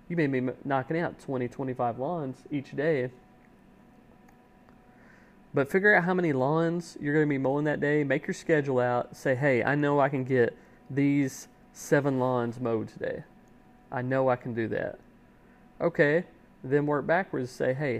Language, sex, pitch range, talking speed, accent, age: English, male, 125-160 Hz, 170 wpm, American, 30-49